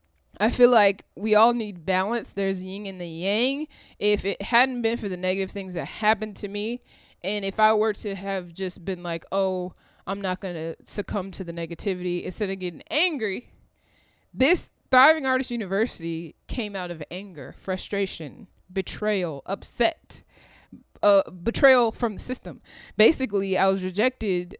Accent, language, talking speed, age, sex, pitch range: American, English, 160 wpm, 20-39, female, 175-215 Hz